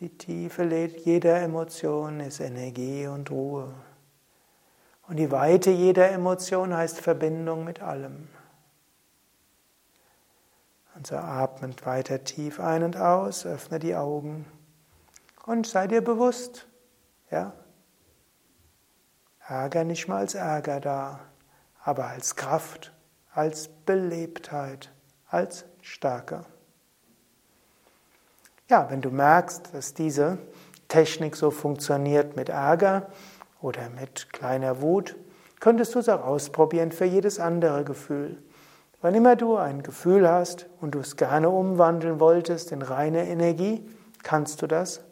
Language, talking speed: German, 115 wpm